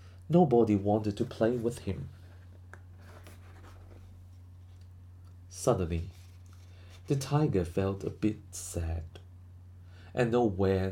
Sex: male